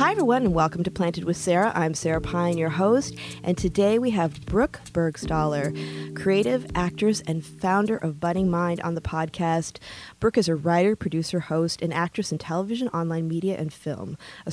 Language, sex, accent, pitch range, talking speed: English, female, American, 165-195 Hz, 180 wpm